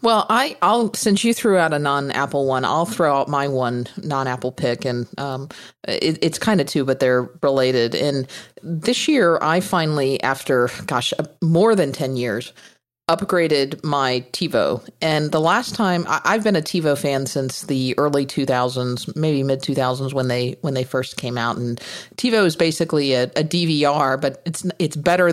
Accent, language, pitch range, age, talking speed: American, English, 130-170 Hz, 40-59, 190 wpm